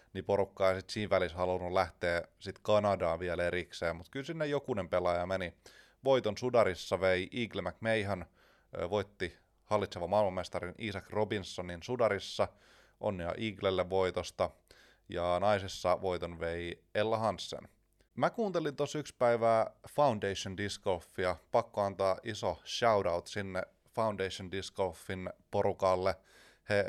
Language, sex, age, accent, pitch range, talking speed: Finnish, male, 30-49, native, 90-110 Hz, 120 wpm